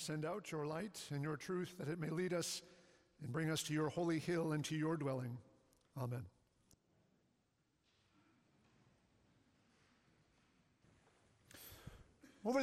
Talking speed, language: 120 wpm, English